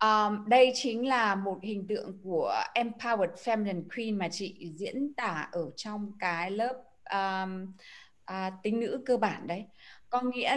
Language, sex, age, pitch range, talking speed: Vietnamese, female, 20-39, 205-260 Hz, 140 wpm